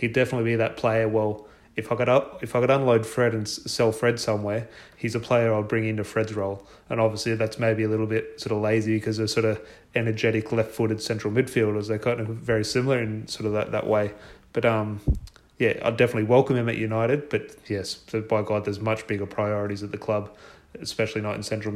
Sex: male